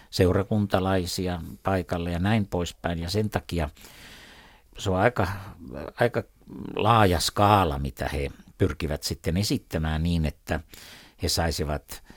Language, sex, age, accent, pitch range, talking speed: Finnish, male, 60-79, native, 80-95 Hz, 115 wpm